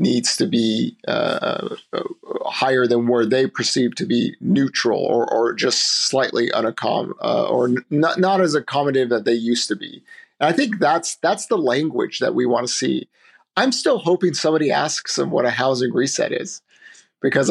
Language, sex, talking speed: English, male, 180 wpm